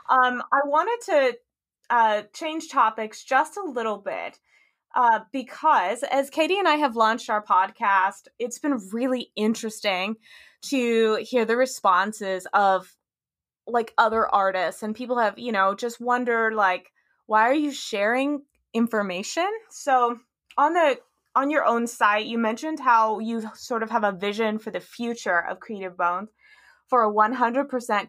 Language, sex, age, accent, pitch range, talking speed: English, female, 20-39, American, 195-255 Hz, 150 wpm